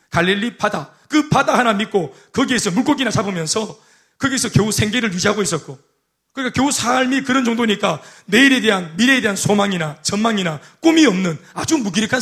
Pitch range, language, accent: 190-250 Hz, Korean, native